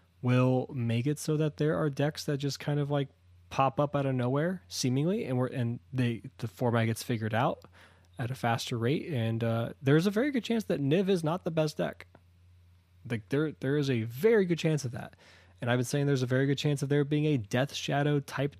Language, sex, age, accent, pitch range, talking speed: English, male, 20-39, American, 110-155 Hz, 230 wpm